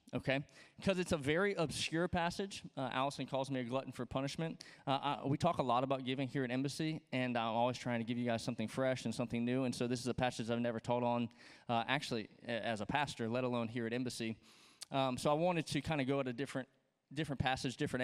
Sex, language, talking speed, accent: male, English, 245 wpm, American